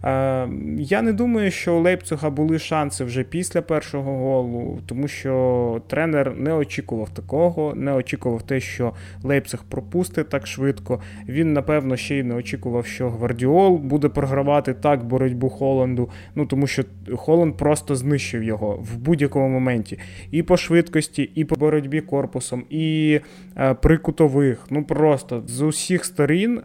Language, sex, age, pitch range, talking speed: Ukrainian, male, 20-39, 120-150 Hz, 145 wpm